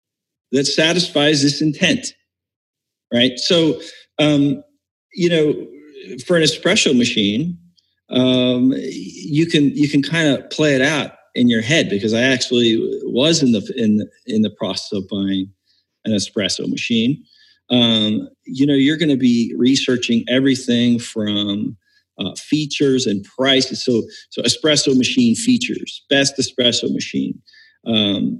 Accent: American